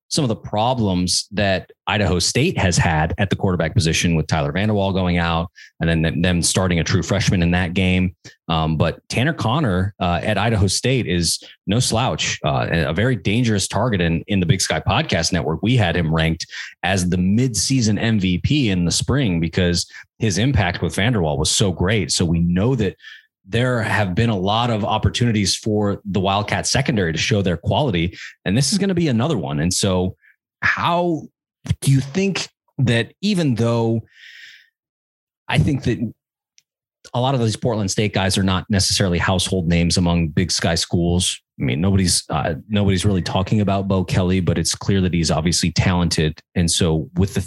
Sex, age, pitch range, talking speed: male, 30-49, 90-115 Hz, 185 wpm